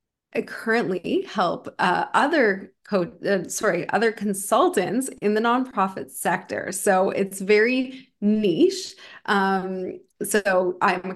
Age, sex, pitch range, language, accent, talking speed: 20-39, female, 185-235 Hz, English, American, 120 wpm